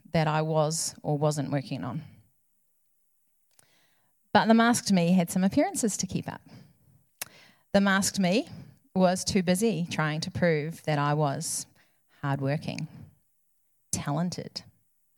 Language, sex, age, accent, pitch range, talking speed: English, female, 40-59, Australian, 160-210 Hz, 125 wpm